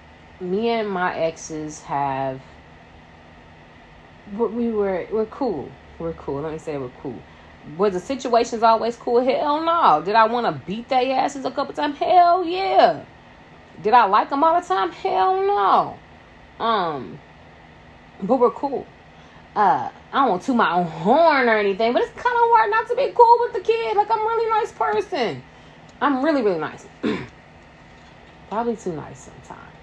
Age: 20-39